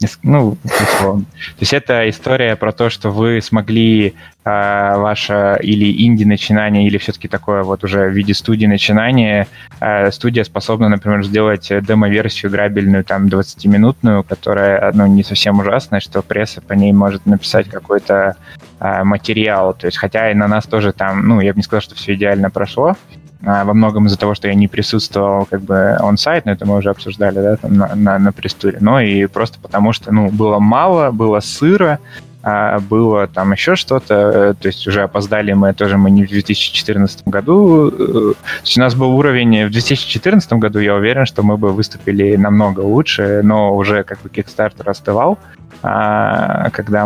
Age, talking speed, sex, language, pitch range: 20-39, 170 wpm, male, Russian, 100-110 Hz